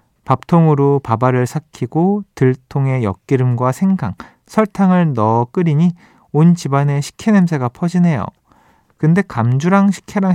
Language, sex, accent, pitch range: Korean, male, native, 130-180 Hz